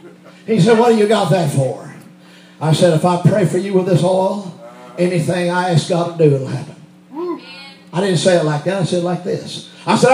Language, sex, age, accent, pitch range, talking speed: English, male, 50-69, American, 160-210 Hz, 230 wpm